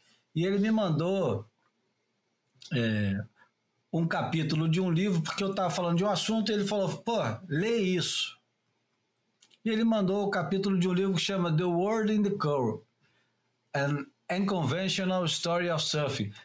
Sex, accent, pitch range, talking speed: male, Brazilian, 140-195 Hz, 160 wpm